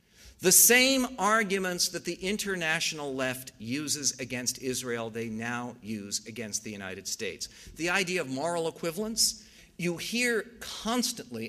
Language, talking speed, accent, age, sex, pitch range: English, 130 wpm, American, 50-69, male, 115-165 Hz